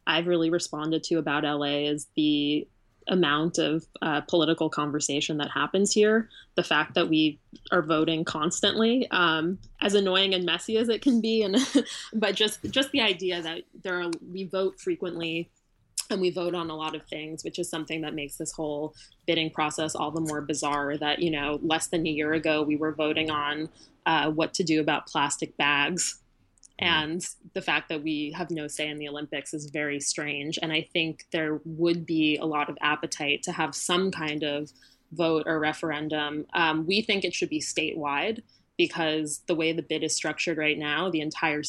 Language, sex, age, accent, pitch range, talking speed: English, female, 20-39, American, 150-175 Hz, 195 wpm